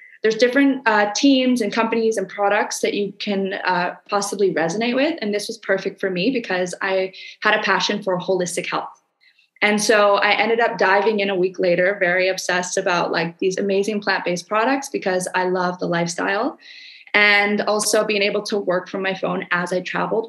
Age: 20-39